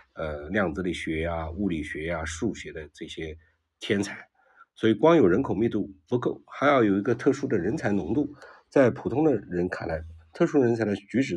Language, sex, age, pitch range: Chinese, male, 50-69, 85-130 Hz